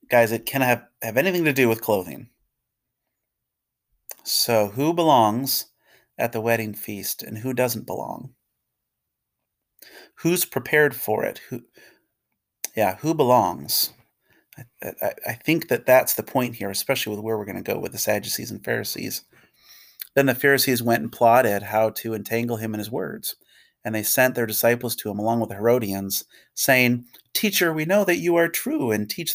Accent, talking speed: American, 170 wpm